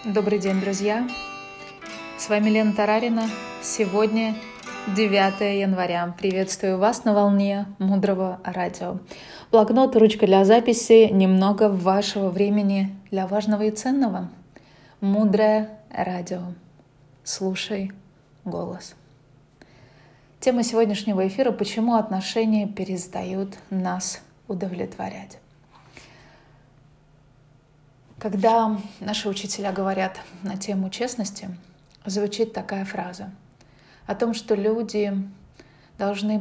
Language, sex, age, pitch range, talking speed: Russian, female, 20-39, 185-215 Hz, 90 wpm